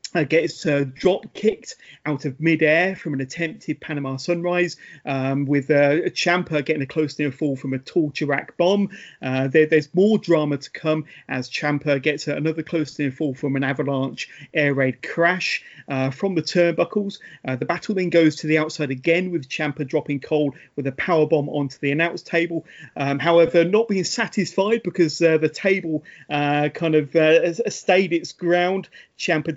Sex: male